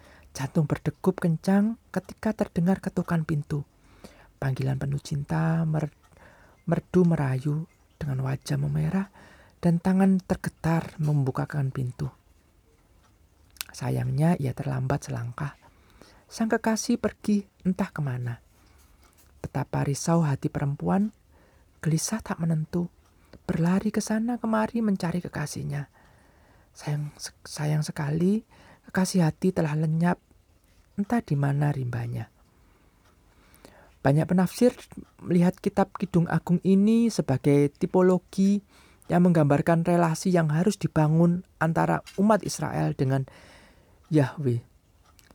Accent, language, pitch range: native, Indonesian, 130-185 Hz